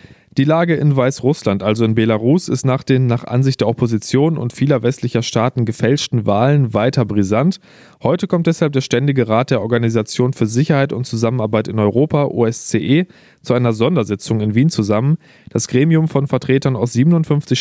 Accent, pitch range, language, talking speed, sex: German, 115-145 Hz, German, 165 wpm, male